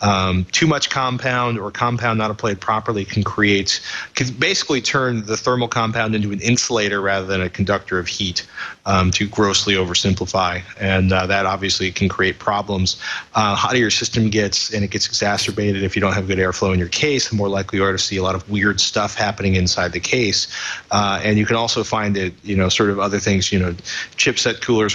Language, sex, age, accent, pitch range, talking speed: English, male, 30-49, American, 95-110 Hz, 210 wpm